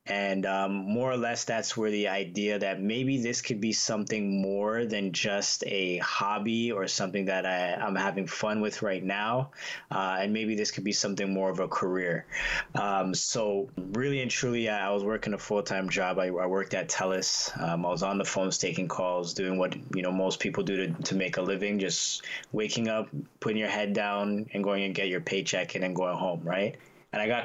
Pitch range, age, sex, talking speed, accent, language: 95-110 Hz, 20-39, male, 215 wpm, American, English